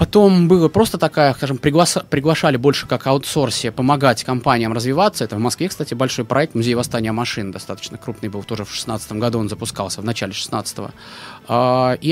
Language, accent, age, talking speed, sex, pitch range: Russian, native, 20-39, 175 wpm, male, 115-160 Hz